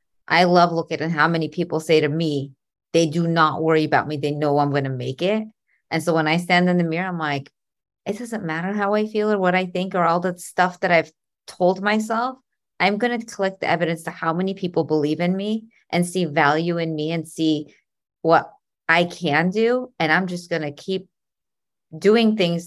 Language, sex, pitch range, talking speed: English, female, 160-200 Hz, 220 wpm